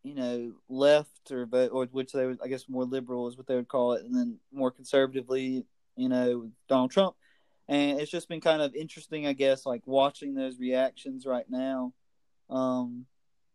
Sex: male